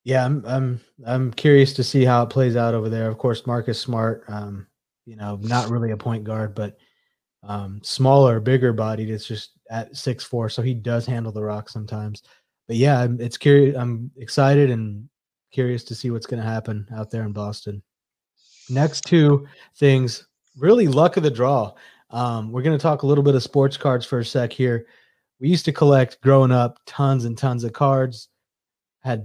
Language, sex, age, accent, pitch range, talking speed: English, male, 20-39, American, 115-135 Hz, 195 wpm